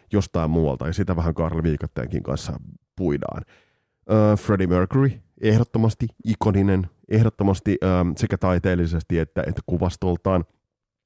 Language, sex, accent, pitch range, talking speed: Finnish, male, native, 90-120 Hz, 115 wpm